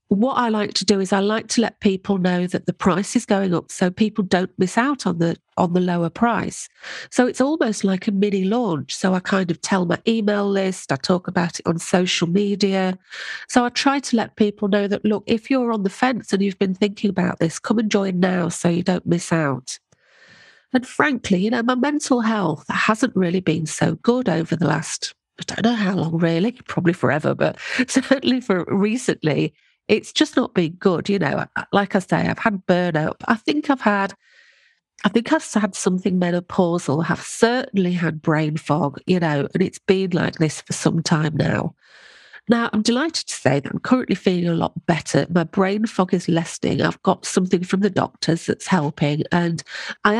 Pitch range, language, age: 170-225 Hz, English, 40-59